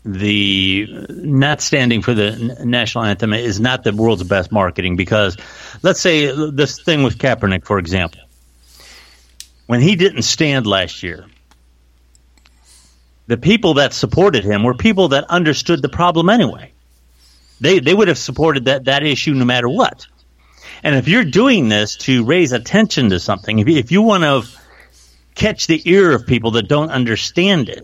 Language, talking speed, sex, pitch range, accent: English, 165 wpm, male, 100-145 Hz, American